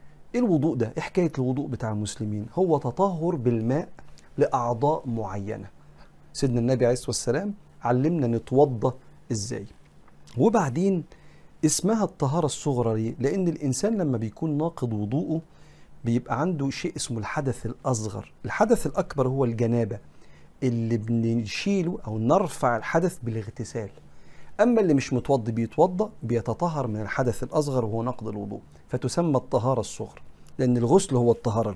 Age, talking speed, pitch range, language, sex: 50-69, 125 wpm, 115-150 Hz, Arabic, male